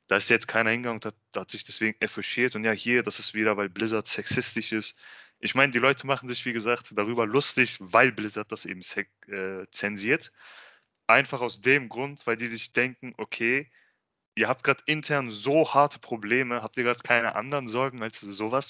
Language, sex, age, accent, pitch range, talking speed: German, male, 20-39, German, 110-135 Hz, 195 wpm